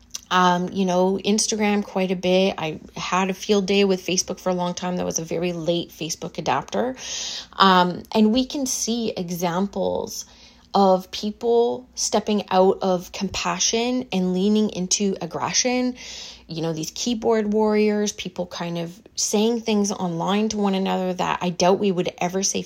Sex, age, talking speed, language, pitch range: female, 30-49, 165 wpm, English, 175-210 Hz